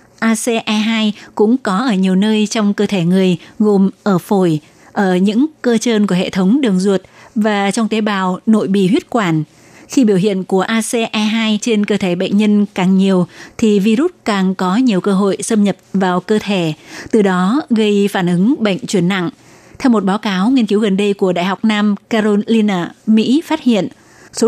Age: 20-39